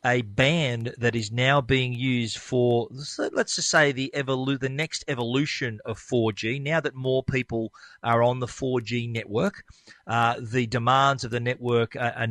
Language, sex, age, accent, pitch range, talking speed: English, male, 40-59, Australian, 120-145 Hz, 170 wpm